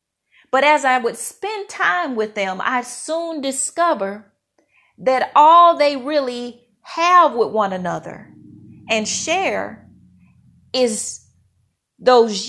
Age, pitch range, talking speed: 40-59, 245-330 Hz, 110 wpm